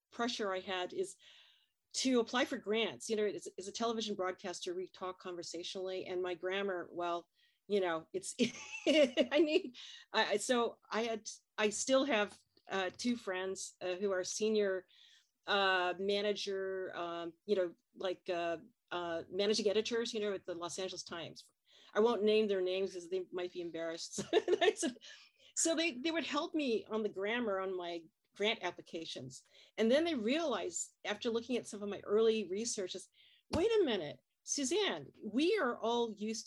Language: English